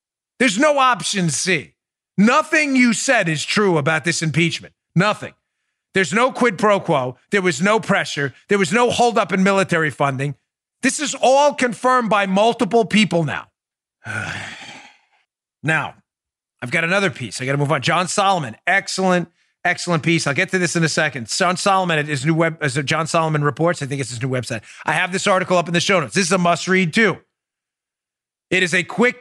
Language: English